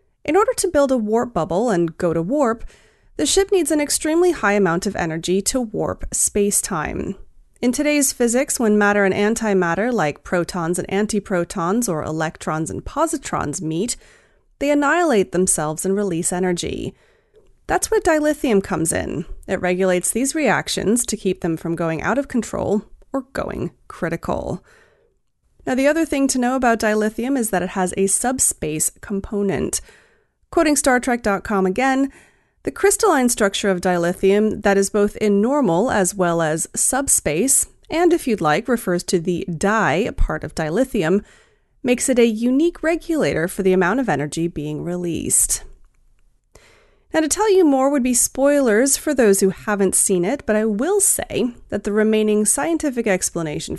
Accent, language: American, English